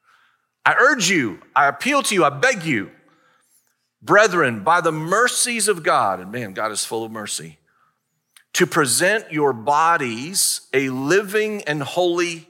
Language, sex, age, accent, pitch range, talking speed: English, male, 40-59, American, 130-170 Hz, 150 wpm